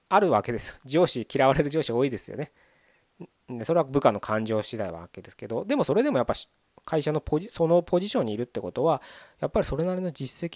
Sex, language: male, Japanese